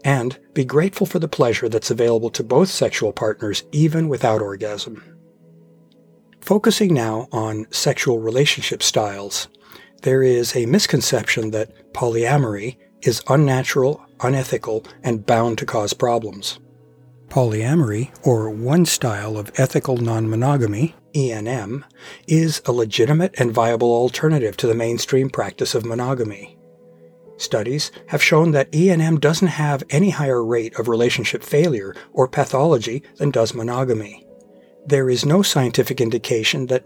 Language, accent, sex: English, American, male